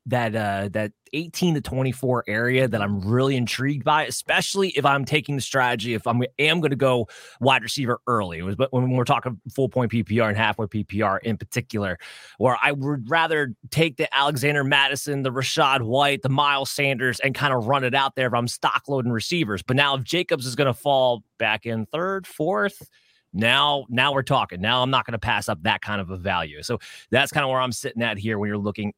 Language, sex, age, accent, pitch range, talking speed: English, male, 30-49, American, 115-145 Hz, 220 wpm